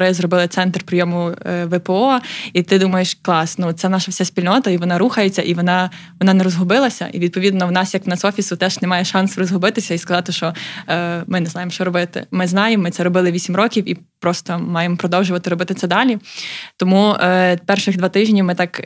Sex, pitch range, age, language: female, 180-200 Hz, 20-39, Ukrainian